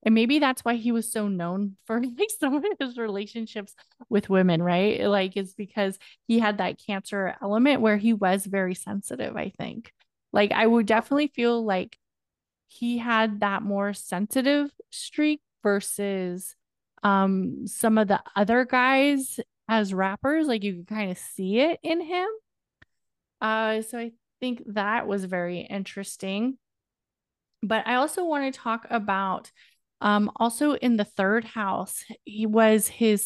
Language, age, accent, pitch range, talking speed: English, 20-39, American, 200-245 Hz, 155 wpm